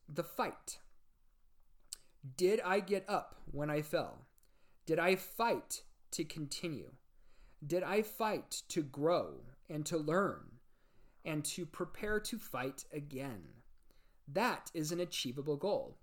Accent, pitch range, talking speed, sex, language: American, 150-205 Hz, 125 wpm, male, English